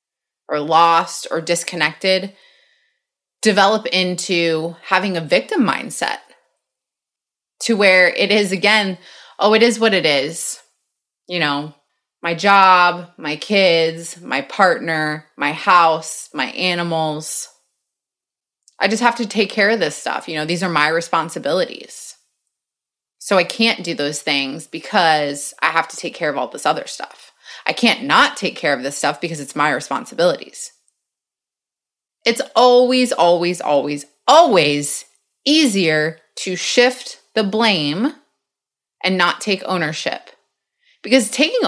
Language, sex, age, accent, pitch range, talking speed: English, female, 20-39, American, 160-230 Hz, 135 wpm